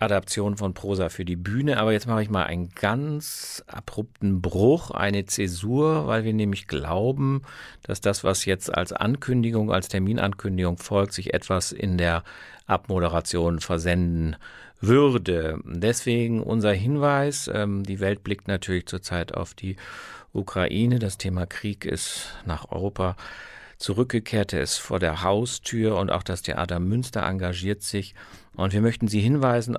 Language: German